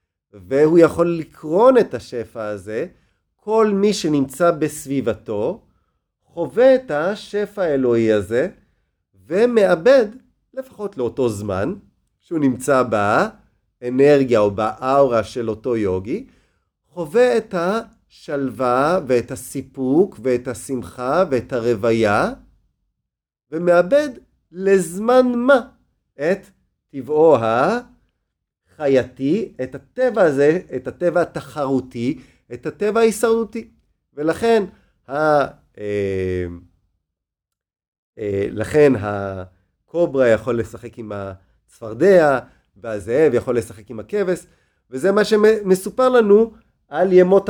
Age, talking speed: 40-59, 90 wpm